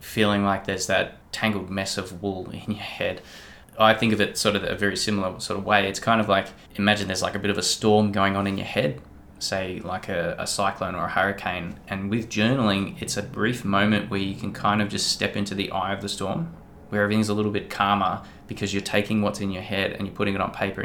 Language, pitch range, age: English, 95-105 Hz, 20-39